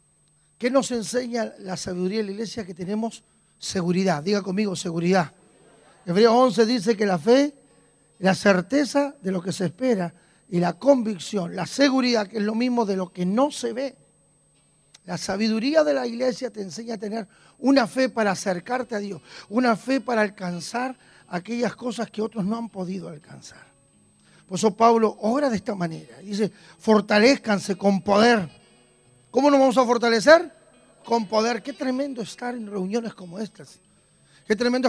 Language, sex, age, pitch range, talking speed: Spanish, male, 40-59, 190-245 Hz, 165 wpm